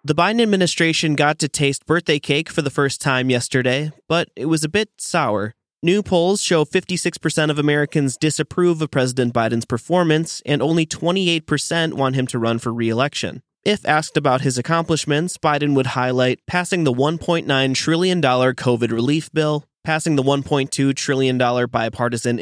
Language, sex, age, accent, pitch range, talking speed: English, male, 20-39, American, 125-155 Hz, 160 wpm